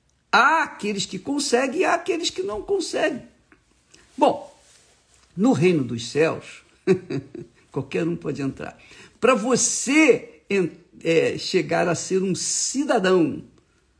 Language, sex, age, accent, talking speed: Portuguese, male, 60-79, Brazilian, 110 wpm